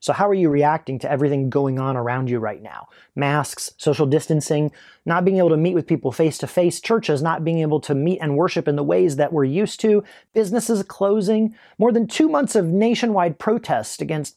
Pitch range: 150-215 Hz